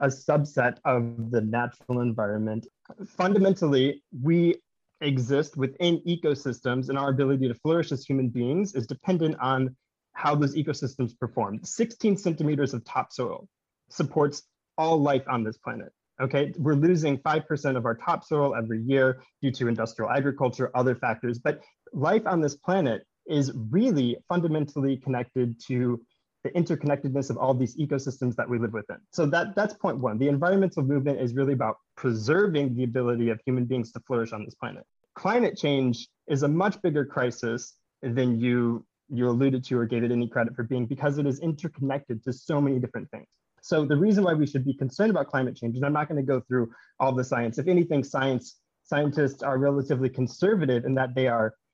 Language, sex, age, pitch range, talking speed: English, male, 20-39, 120-145 Hz, 175 wpm